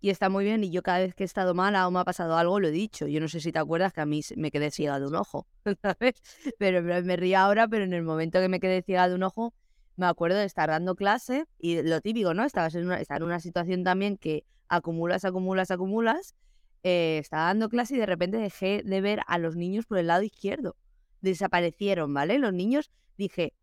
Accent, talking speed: Spanish, 235 wpm